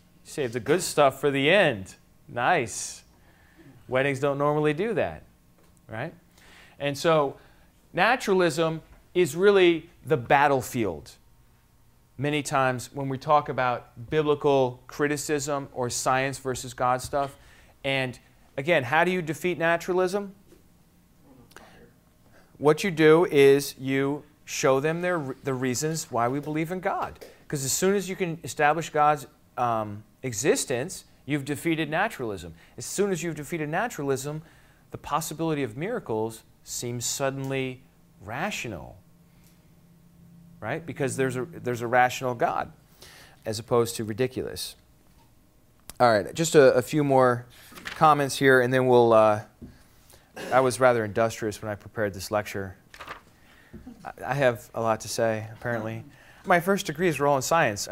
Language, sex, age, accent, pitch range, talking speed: English, male, 30-49, American, 120-160 Hz, 135 wpm